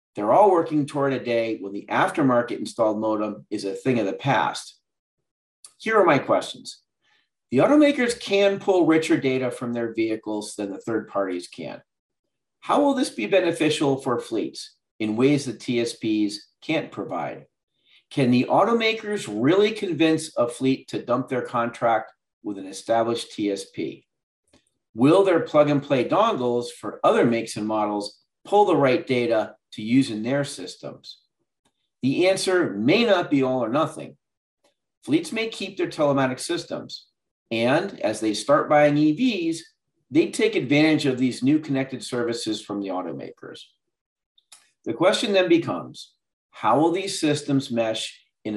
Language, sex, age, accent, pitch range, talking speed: English, male, 50-69, American, 110-170 Hz, 155 wpm